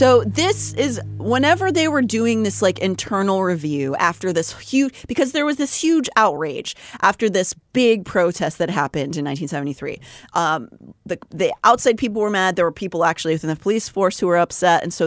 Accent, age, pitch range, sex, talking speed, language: American, 30-49, 155-195 Hz, female, 190 wpm, English